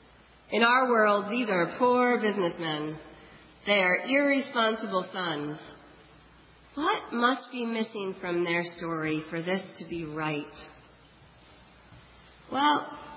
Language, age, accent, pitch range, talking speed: English, 40-59, American, 165-230 Hz, 110 wpm